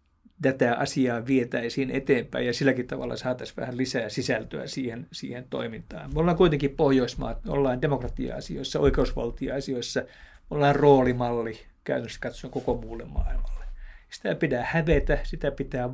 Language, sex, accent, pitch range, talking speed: Finnish, male, native, 120-140 Hz, 125 wpm